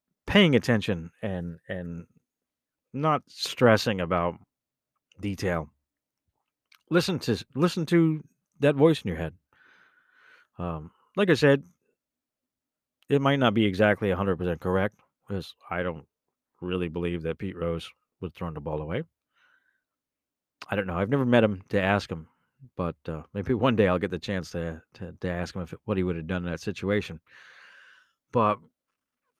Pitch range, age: 90-135 Hz, 40-59